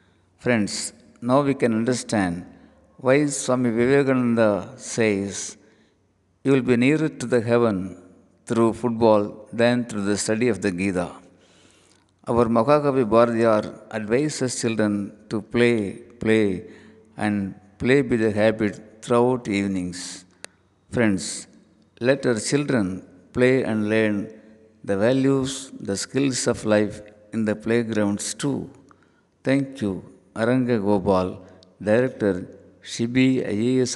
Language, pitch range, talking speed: Tamil, 100-125 Hz, 115 wpm